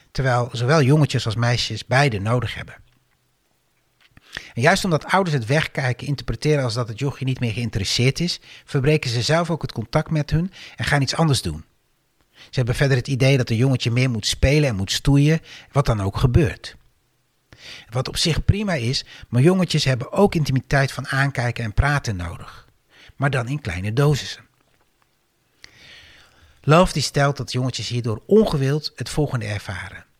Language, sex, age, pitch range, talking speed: Dutch, male, 60-79, 115-150 Hz, 165 wpm